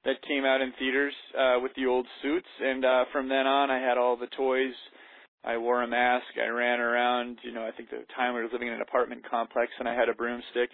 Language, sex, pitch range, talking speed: English, male, 120-135 Hz, 250 wpm